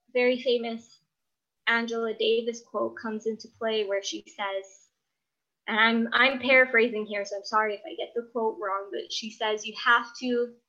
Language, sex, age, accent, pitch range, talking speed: English, female, 20-39, American, 215-260 Hz, 175 wpm